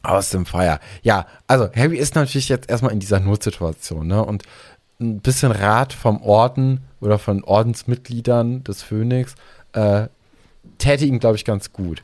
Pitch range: 105-130 Hz